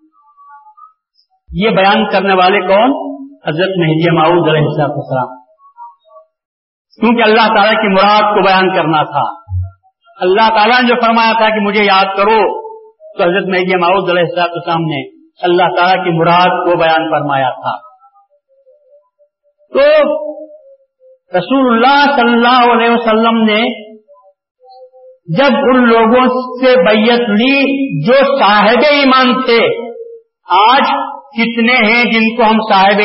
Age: 50-69